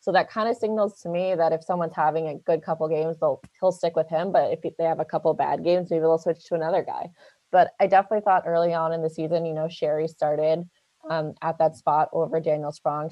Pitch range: 160-185 Hz